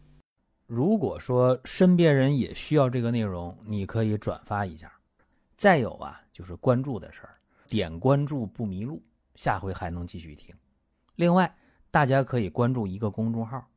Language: Chinese